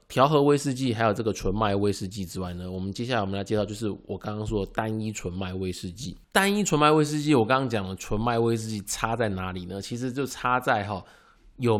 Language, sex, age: Chinese, male, 20-39